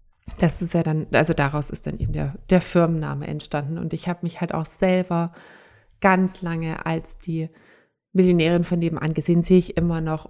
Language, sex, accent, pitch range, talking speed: German, female, German, 160-195 Hz, 185 wpm